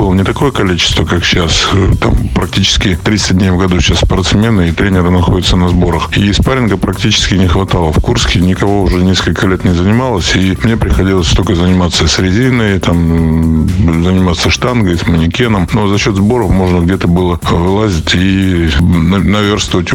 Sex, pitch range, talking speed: male, 90-110 Hz, 160 wpm